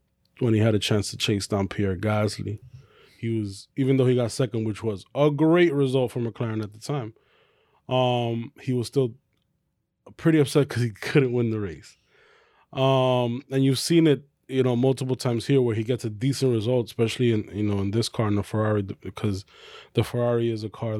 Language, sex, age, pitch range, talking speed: English, male, 20-39, 105-130 Hz, 205 wpm